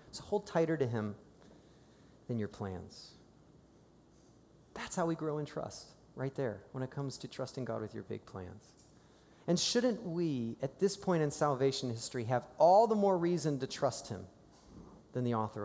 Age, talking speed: 40-59, 175 wpm